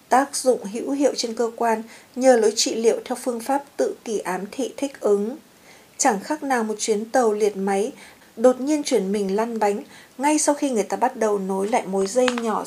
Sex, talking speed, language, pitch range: female, 220 wpm, Vietnamese, 210-260 Hz